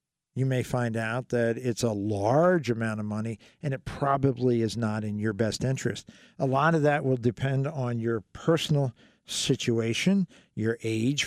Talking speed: 170 wpm